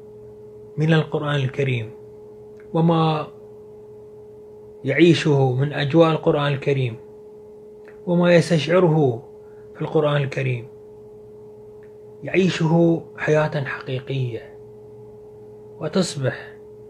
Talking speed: 65 wpm